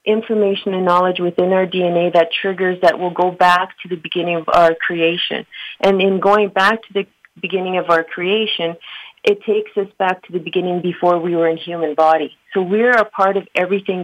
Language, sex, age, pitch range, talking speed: English, female, 40-59, 175-195 Hz, 200 wpm